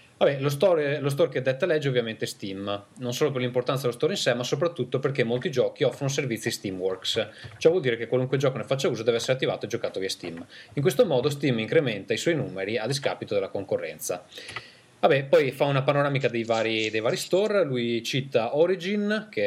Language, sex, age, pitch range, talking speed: Italian, male, 20-39, 115-155 Hz, 215 wpm